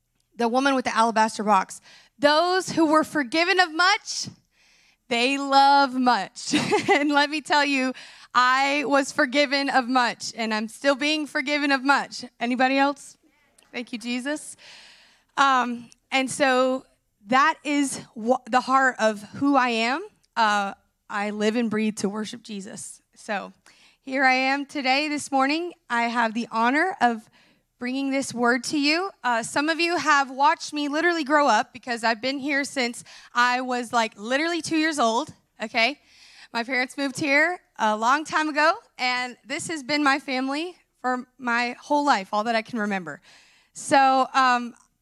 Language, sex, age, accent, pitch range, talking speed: English, female, 20-39, American, 225-290 Hz, 165 wpm